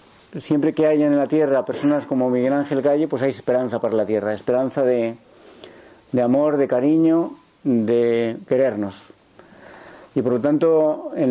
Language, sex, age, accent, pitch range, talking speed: Spanish, male, 40-59, Spanish, 125-155 Hz, 160 wpm